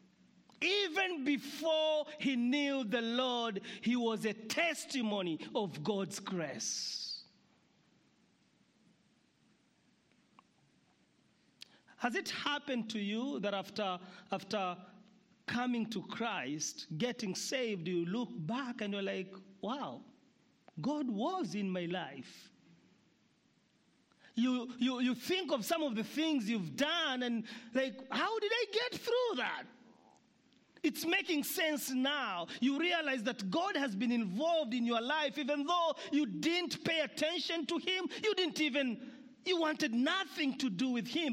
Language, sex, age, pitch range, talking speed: English, male, 40-59, 210-300 Hz, 130 wpm